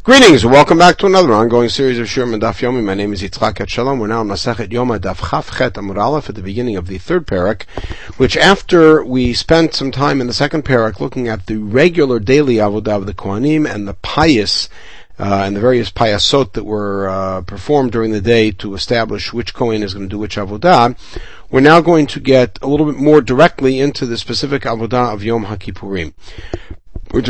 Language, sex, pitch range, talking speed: English, male, 105-140 Hz, 205 wpm